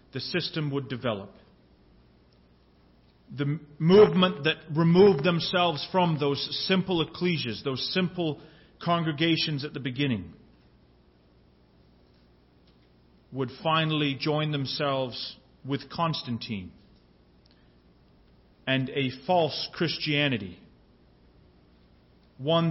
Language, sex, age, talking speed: English, male, 40-59, 80 wpm